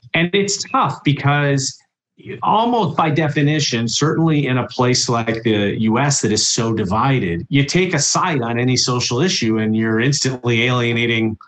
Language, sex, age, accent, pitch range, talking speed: English, male, 40-59, American, 110-145 Hz, 155 wpm